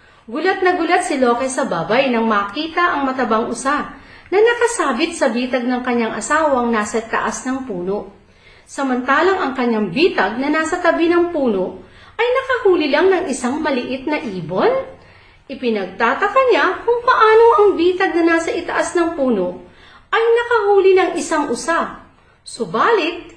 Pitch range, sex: 235-350 Hz, female